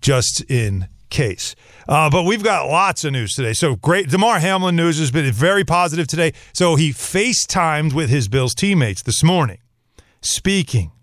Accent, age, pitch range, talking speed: American, 40-59, 130-175 Hz, 170 wpm